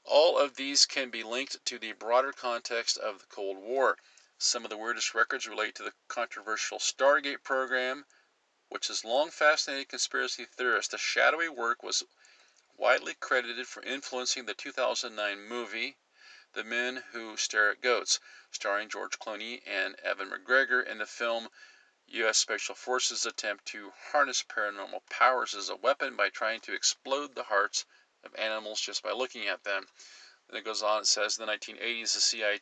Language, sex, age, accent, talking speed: English, male, 50-69, American, 170 wpm